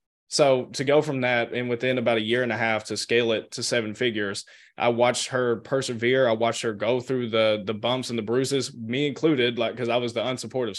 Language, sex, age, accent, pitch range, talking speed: English, male, 20-39, American, 115-135 Hz, 235 wpm